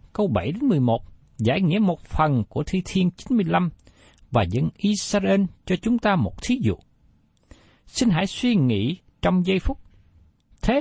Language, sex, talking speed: Vietnamese, male, 155 wpm